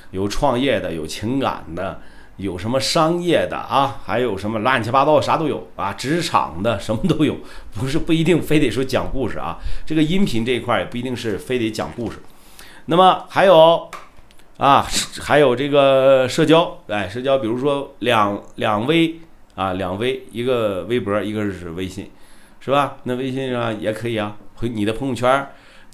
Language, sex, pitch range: Chinese, male, 105-135 Hz